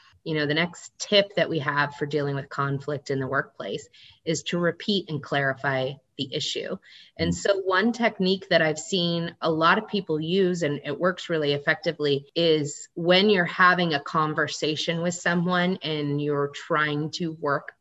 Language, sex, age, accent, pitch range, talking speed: English, female, 30-49, American, 150-185 Hz, 175 wpm